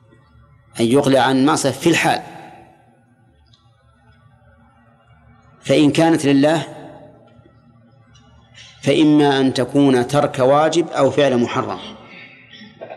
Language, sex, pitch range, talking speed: Arabic, male, 120-150 Hz, 80 wpm